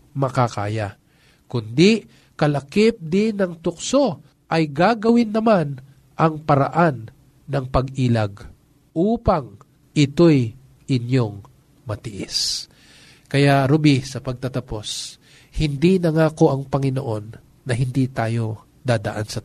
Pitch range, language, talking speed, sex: 120-150 Hz, Filipino, 100 wpm, male